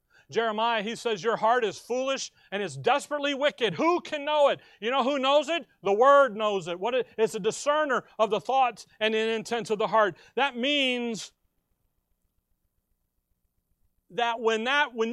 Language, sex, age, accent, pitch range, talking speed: English, male, 40-59, American, 185-250 Hz, 175 wpm